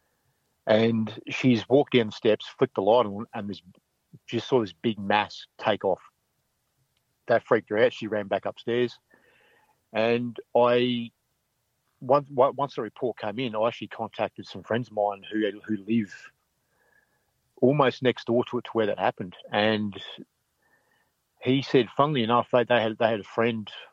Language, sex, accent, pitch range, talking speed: English, male, Australian, 105-120 Hz, 165 wpm